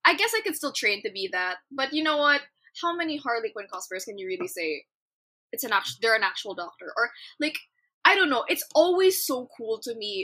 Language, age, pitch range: Filipino, 10-29, 190-285 Hz